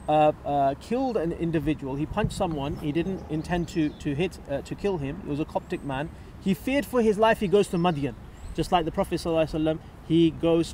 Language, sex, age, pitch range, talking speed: English, male, 30-49, 150-185 Hz, 210 wpm